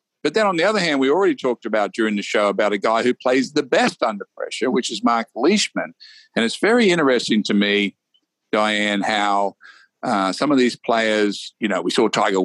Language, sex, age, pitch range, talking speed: English, male, 50-69, 100-140 Hz, 210 wpm